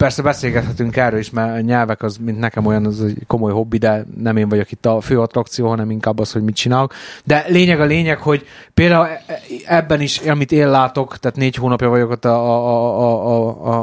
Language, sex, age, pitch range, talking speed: Hungarian, male, 30-49, 120-140 Hz, 215 wpm